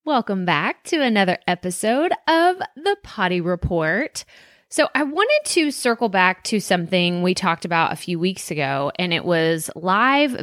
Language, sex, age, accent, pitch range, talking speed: English, female, 20-39, American, 185-250 Hz, 160 wpm